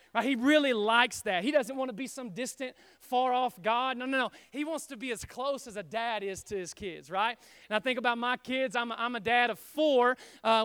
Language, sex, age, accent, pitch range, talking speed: English, male, 30-49, American, 230-270 Hz, 255 wpm